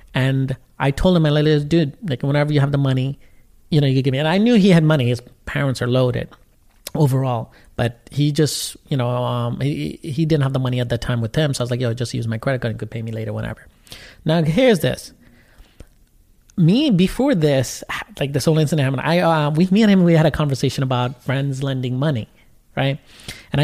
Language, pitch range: English, 125-165 Hz